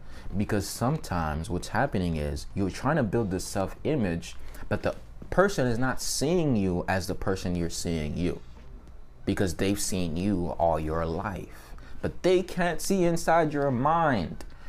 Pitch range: 80-120 Hz